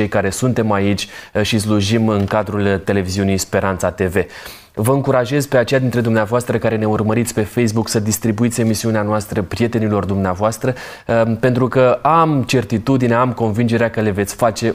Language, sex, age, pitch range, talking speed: Romanian, male, 20-39, 105-120 Hz, 155 wpm